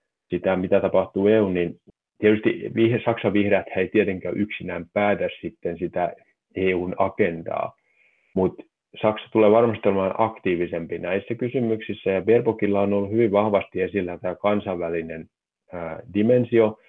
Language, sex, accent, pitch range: Finnish, male, native, 90-110 Hz